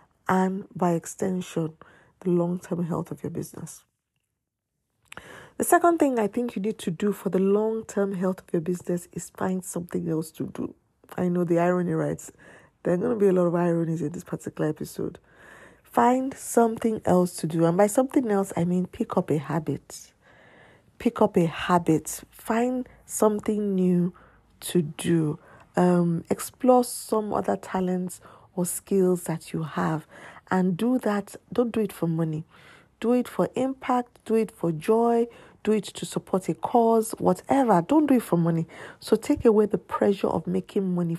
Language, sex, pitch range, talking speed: English, female, 175-225 Hz, 175 wpm